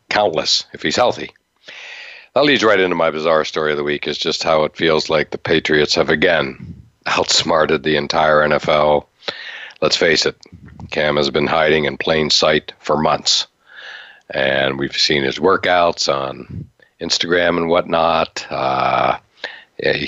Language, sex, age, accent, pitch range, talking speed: English, male, 50-69, American, 75-90 Hz, 150 wpm